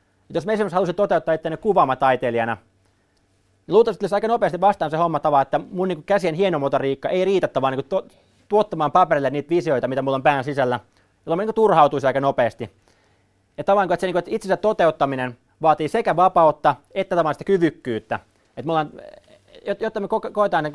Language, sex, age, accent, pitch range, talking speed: Finnish, male, 30-49, native, 125-180 Hz, 165 wpm